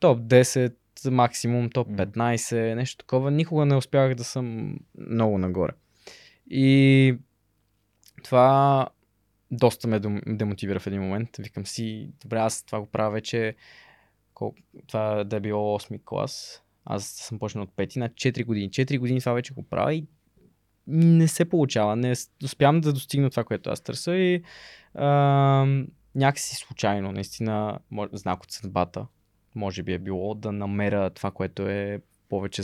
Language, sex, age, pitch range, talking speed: Bulgarian, male, 20-39, 100-135 Hz, 150 wpm